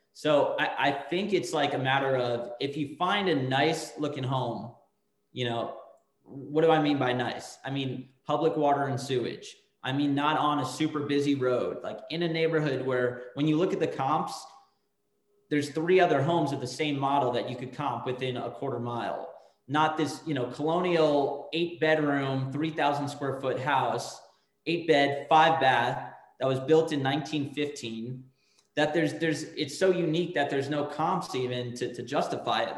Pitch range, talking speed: 130-165 Hz, 185 wpm